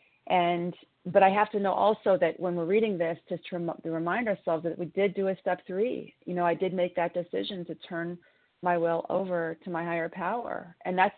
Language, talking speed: English, 225 wpm